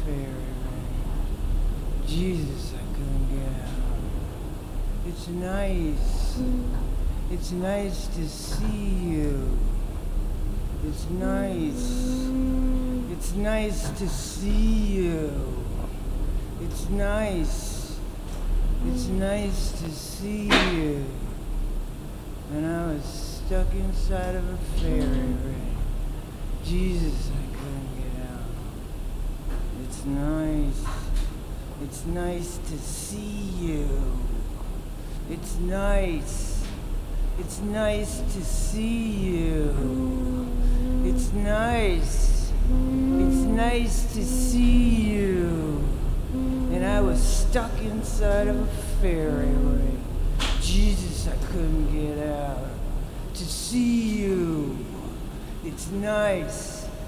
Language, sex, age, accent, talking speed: English, male, 60-79, American, 85 wpm